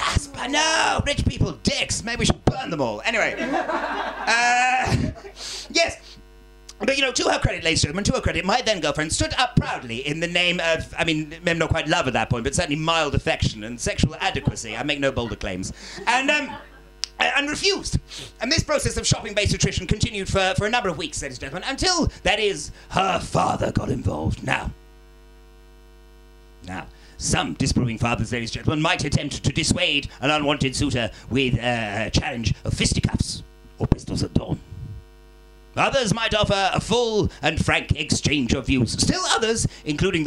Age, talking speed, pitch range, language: 40-59, 180 wpm, 110-185 Hz, English